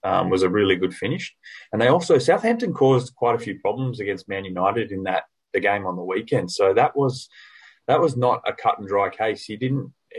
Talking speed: 225 wpm